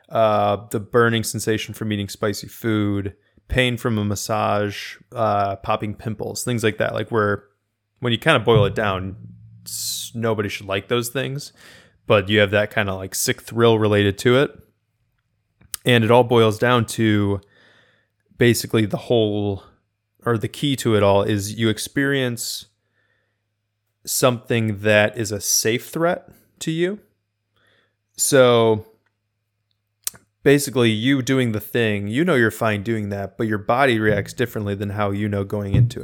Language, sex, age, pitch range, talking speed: English, male, 20-39, 105-120 Hz, 155 wpm